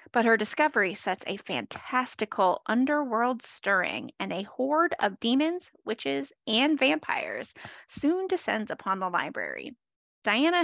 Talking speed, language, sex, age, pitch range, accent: 125 wpm, English, female, 30-49, 210-305 Hz, American